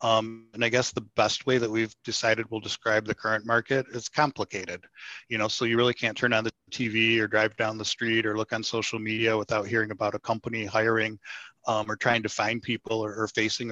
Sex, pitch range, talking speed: male, 110-120 Hz, 230 wpm